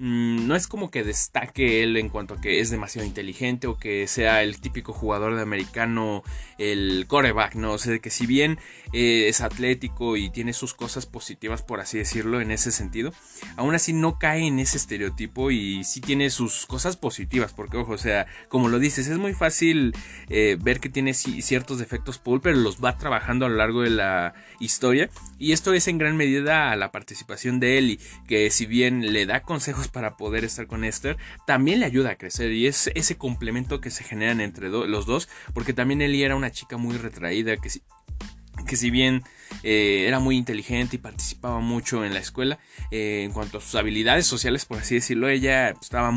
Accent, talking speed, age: Mexican, 200 wpm, 20-39